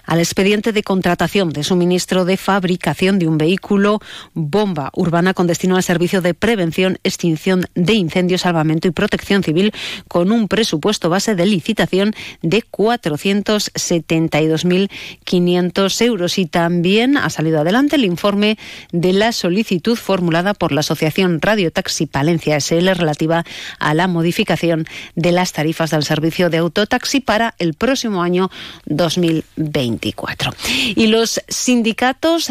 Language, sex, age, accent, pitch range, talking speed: Spanish, female, 40-59, Spanish, 170-220 Hz, 135 wpm